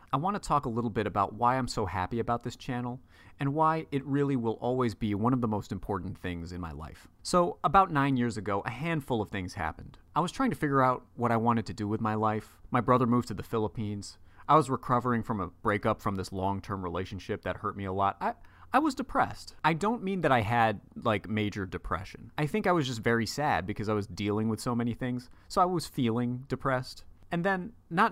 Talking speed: 240 wpm